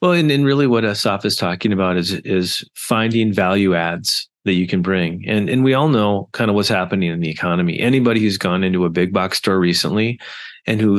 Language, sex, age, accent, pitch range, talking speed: English, male, 30-49, American, 100-125 Hz, 225 wpm